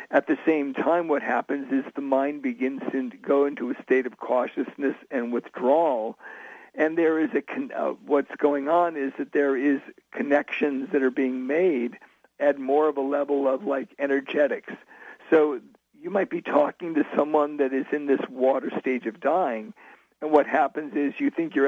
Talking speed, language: 180 wpm, English